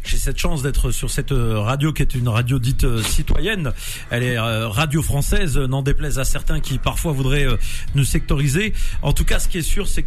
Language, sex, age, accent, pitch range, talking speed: French, male, 40-59, French, 130-165 Hz, 205 wpm